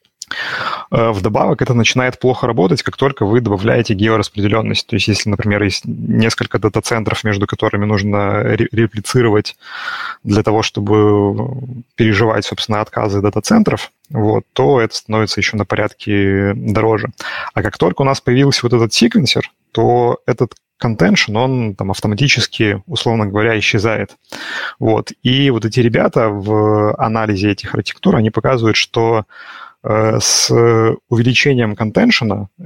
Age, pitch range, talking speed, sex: 20-39, 105-120 Hz, 130 wpm, male